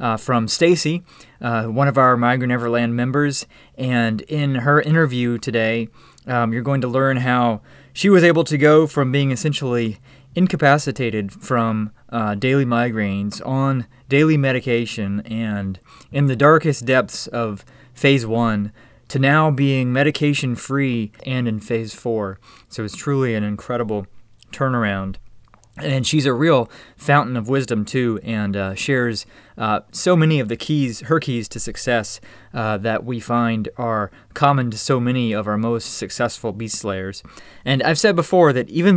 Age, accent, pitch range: 20-39, American, 110-135 Hz